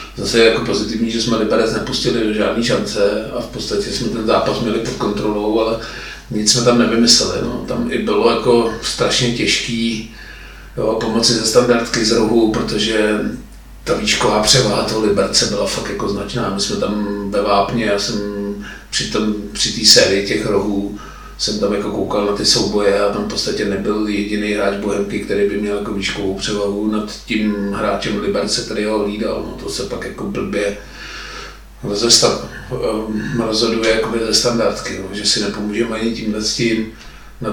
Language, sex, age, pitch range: Czech, male, 40-59, 105-115 Hz